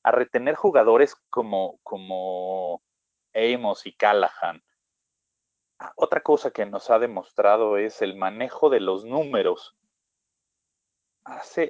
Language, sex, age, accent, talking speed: Spanish, male, 30-49, Mexican, 110 wpm